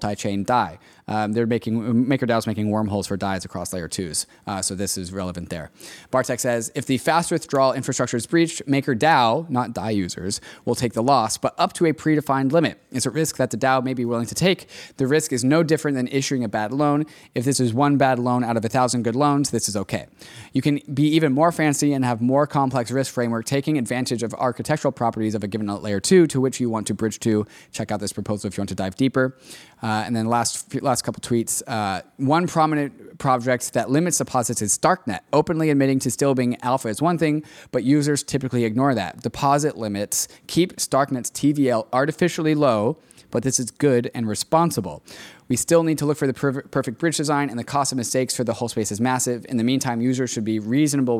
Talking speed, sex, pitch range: 225 wpm, male, 115-145 Hz